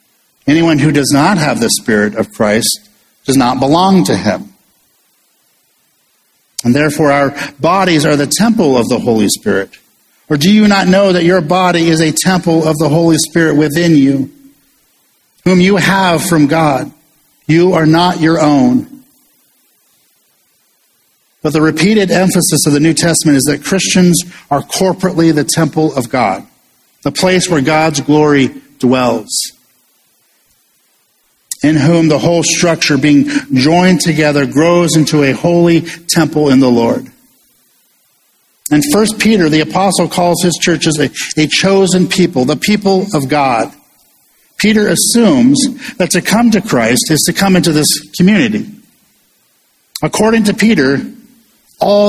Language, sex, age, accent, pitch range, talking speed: English, male, 50-69, American, 150-190 Hz, 145 wpm